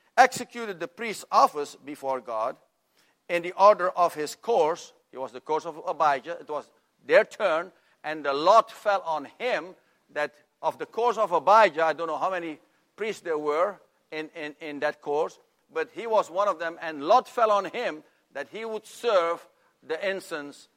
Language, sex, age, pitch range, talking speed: English, male, 50-69, 145-190 Hz, 185 wpm